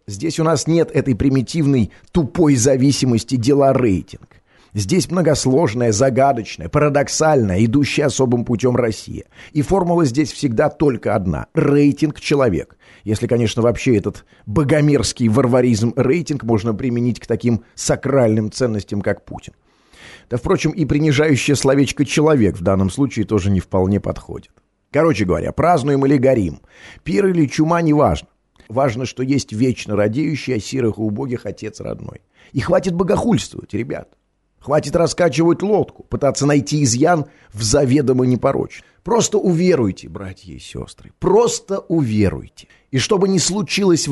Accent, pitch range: native, 110-150 Hz